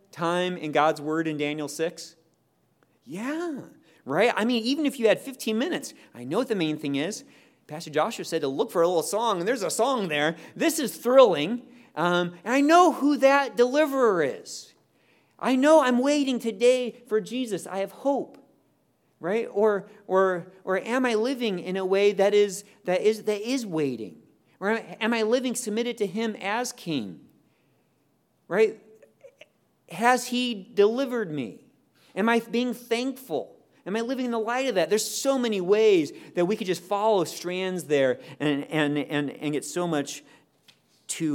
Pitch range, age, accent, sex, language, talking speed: 160-240 Hz, 40-59, American, male, English, 175 wpm